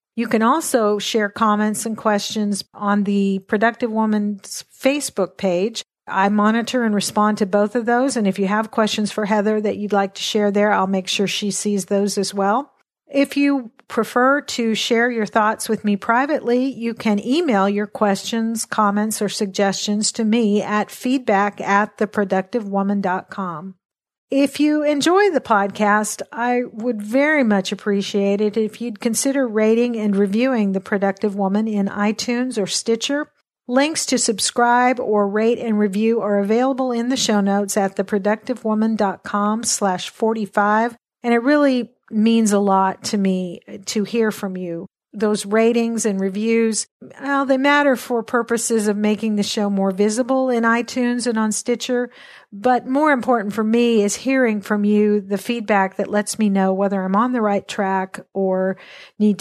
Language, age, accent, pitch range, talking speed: English, 50-69, American, 200-235 Hz, 165 wpm